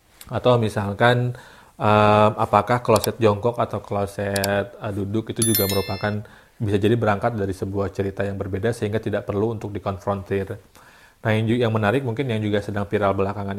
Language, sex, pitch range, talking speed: Indonesian, male, 100-110 Hz, 165 wpm